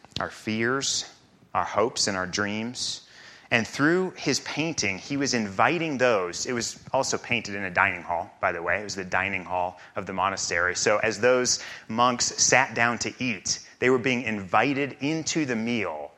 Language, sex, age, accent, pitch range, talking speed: English, male, 30-49, American, 105-140 Hz, 180 wpm